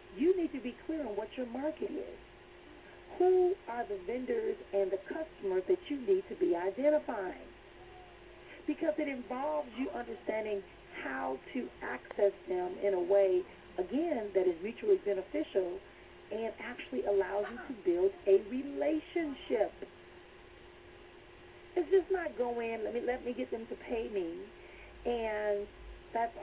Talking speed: 145 wpm